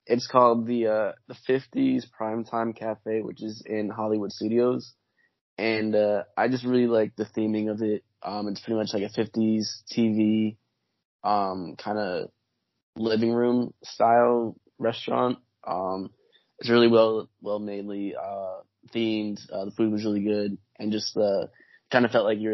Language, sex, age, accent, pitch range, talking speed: English, male, 20-39, American, 100-110 Hz, 160 wpm